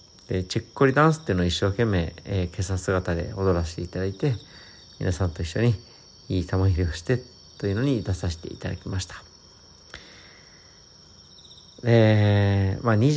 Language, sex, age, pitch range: Japanese, male, 50-69, 90-110 Hz